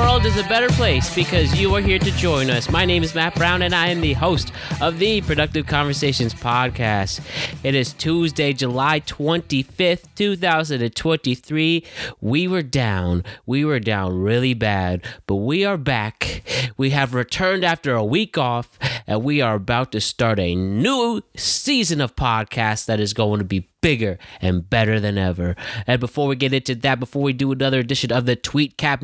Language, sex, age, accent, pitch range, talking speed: English, male, 20-39, American, 110-150 Hz, 185 wpm